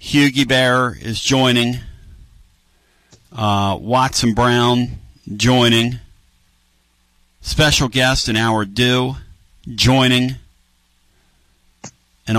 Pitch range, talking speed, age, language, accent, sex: 75-120 Hz, 75 wpm, 50-69, English, American, male